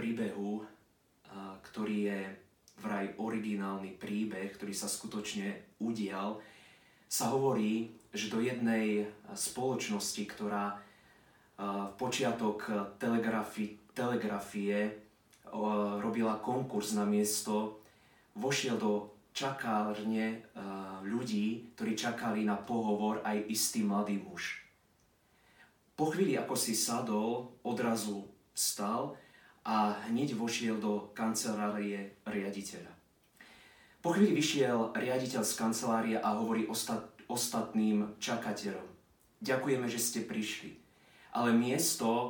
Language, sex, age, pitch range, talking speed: Slovak, male, 20-39, 105-115 Hz, 95 wpm